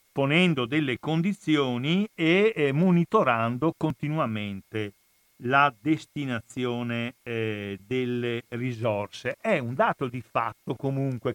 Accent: native